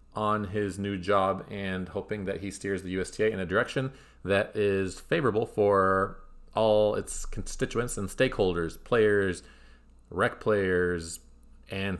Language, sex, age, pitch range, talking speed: English, male, 30-49, 95-115 Hz, 135 wpm